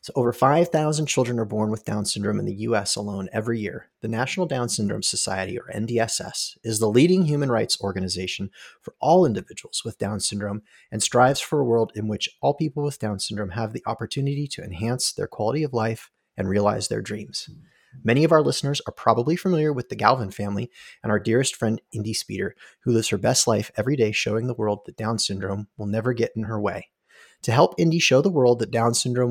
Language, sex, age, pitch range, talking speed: English, male, 30-49, 105-130 Hz, 215 wpm